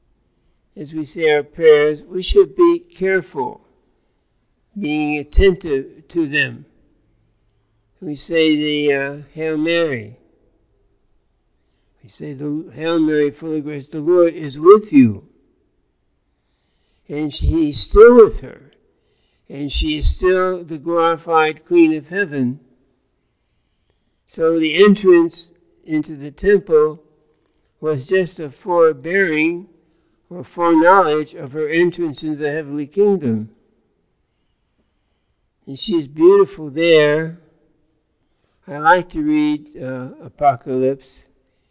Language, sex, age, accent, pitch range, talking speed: English, male, 60-79, American, 140-170 Hz, 110 wpm